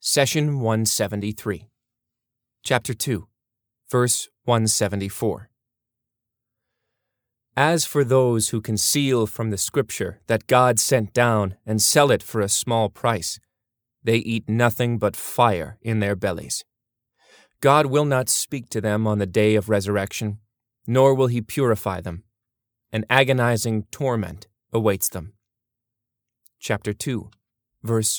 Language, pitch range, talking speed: English, 105-125 Hz, 120 wpm